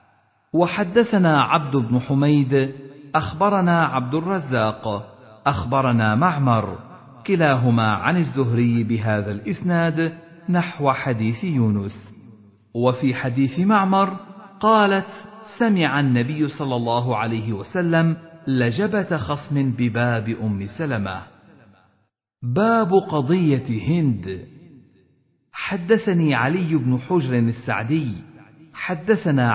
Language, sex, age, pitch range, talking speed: Arabic, male, 50-69, 115-165 Hz, 85 wpm